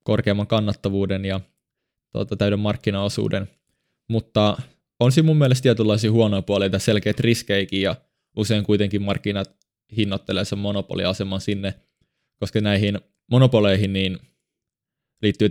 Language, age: Finnish, 20-39